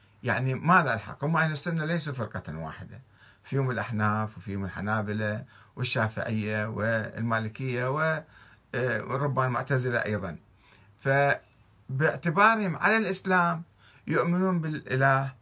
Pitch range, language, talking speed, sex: 110-150 Hz, Arabic, 85 wpm, male